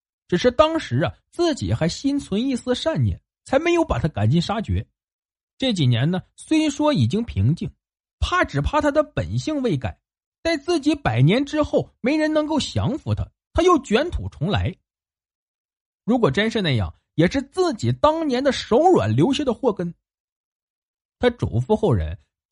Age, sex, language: 50-69, male, Chinese